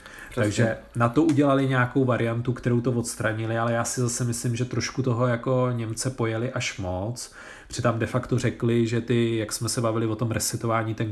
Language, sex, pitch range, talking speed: Czech, male, 110-125 Hz, 195 wpm